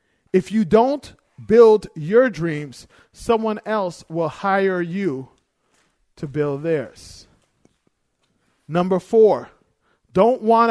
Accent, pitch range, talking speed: American, 175-220 Hz, 100 wpm